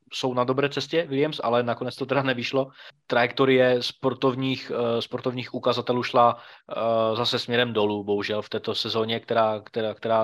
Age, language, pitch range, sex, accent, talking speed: 20-39, Czech, 115-130 Hz, male, native, 140 wpm